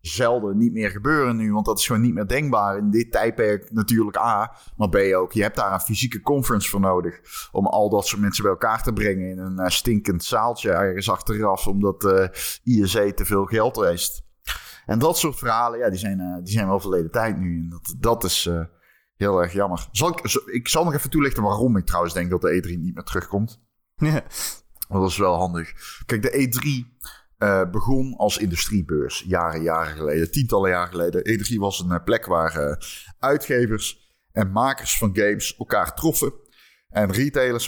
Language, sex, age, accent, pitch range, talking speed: Dutch, male, 30-49, Dutch, 95-120 Hz, 195 wpm